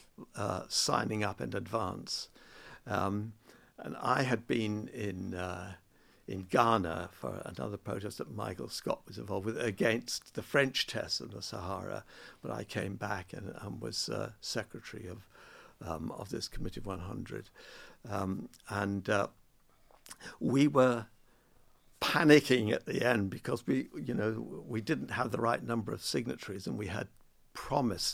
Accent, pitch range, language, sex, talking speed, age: British, 100-120 Hz, English, male, 150 wpm, 60-79